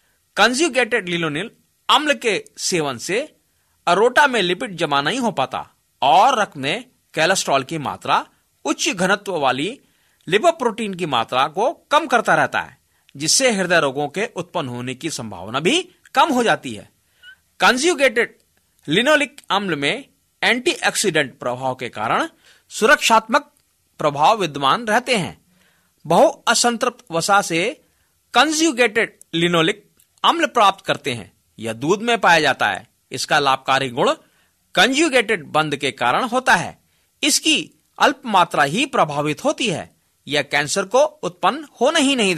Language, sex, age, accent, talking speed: Hindi, male, 40-59, native, 130 wpm